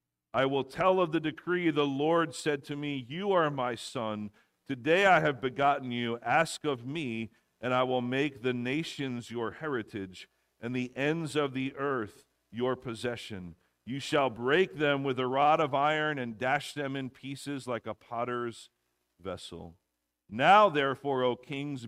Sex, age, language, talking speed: male, 50-69, English, 165 wpm